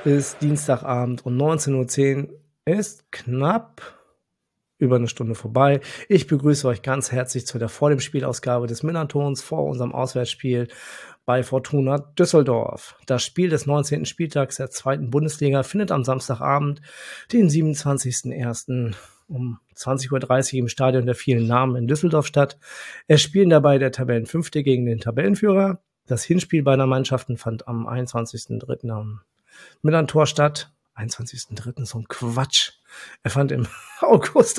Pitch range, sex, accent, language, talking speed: 125-150 Hz, male, German, German, 135 wpm